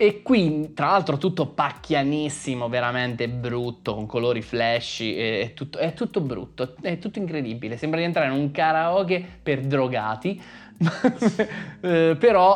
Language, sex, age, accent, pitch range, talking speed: Italian, male, 20-39, native, 120-155 Hz, 135 wpm